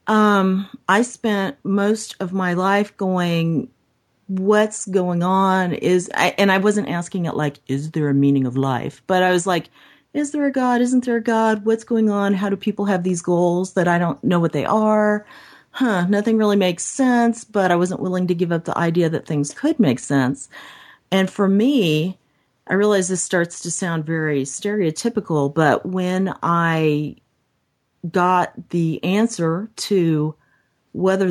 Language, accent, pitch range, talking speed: English, American, 155-200 Hz, 175 wpm